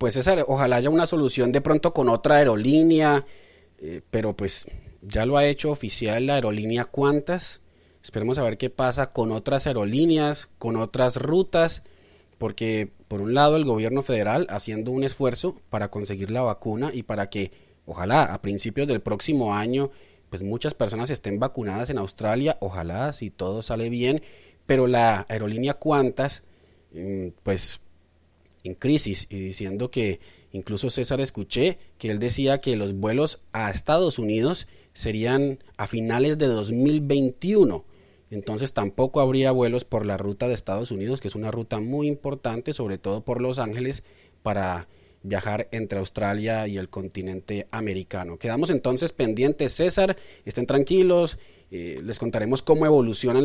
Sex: male